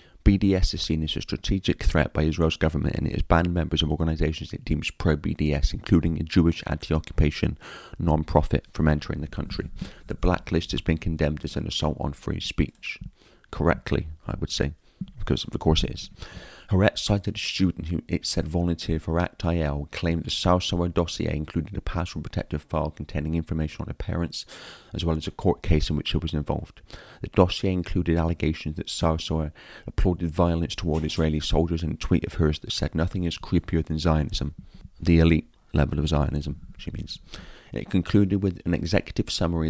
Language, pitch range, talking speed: English, 80-90 Hz, 185 wpm